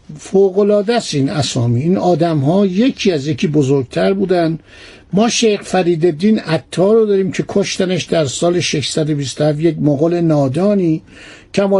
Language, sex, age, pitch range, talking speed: Persian, male, 60-79, 160-200 Hz, 125 wpm